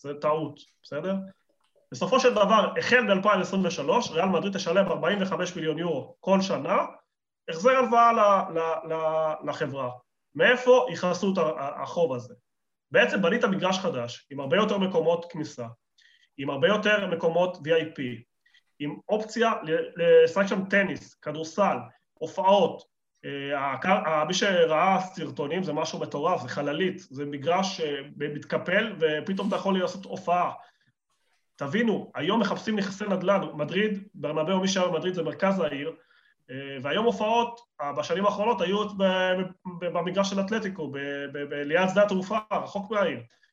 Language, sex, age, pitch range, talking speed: Hebrew, male, 30-49, 160-210 Hz, 125 wpm